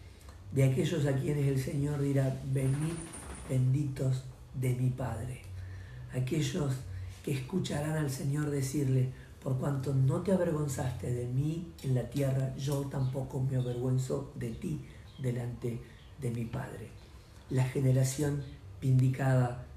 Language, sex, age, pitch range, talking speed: Spanish, male, 50-69, 115-140 Hz, 125 wpm